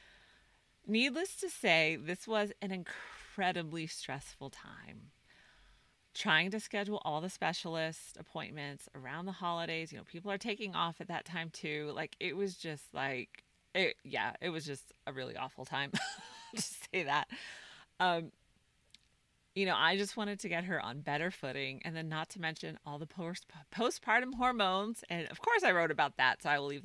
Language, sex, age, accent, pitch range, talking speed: English, female, 30-49, American, 150-200 Hz, 175 wpm